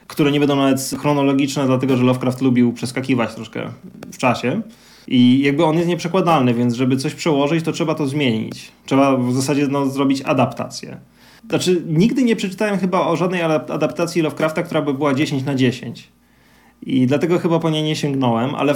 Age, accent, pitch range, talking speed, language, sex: 20-39, native, 135-170 Hz, 175 wpm, Polish, male